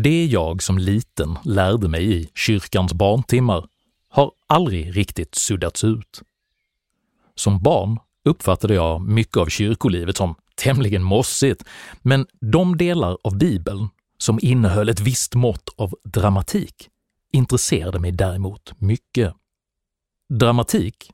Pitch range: 95-125 Hz